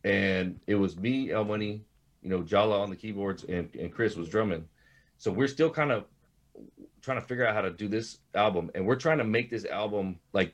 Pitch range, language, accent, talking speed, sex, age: 95-120 Hz, English, American, 220 wpm, male, 30-49